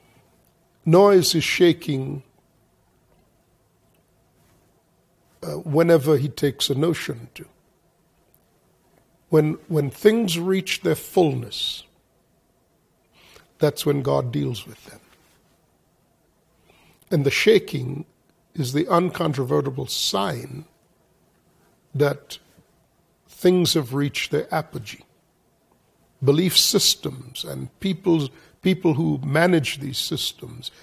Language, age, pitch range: English, 50-69, 140-170 Hz